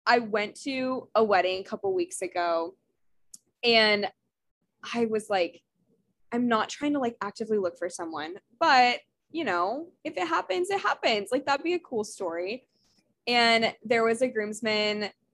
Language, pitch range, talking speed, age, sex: English, 195-260 Hz, 160 wpm, 10-29, female